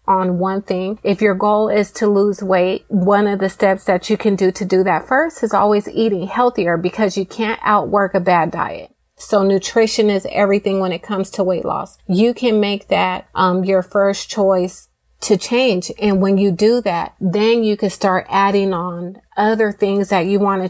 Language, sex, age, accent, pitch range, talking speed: English, female, 30-49, American, 185-210 Hz, 205 wpm